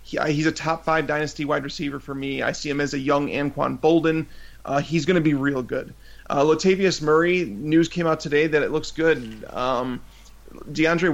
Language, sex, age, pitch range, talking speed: English, male, 30-49, 145-165 Hz, 190 wpm